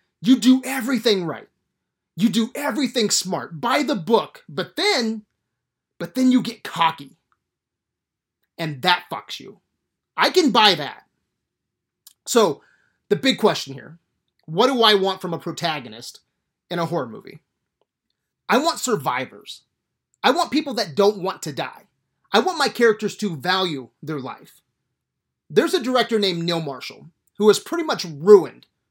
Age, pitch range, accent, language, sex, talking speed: 30-49, 170-240 Hz, American, English, male, 150 wpm